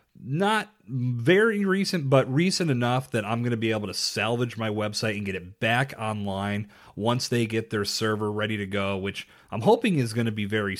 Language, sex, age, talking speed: English, male, 30-49, 205 wpm